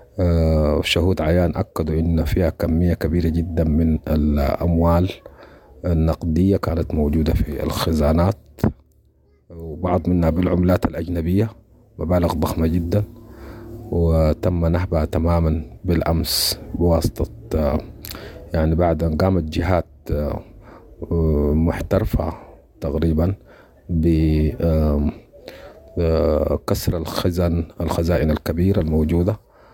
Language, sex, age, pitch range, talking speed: English, male, 40-59, 80-90 Hz, 80 wpm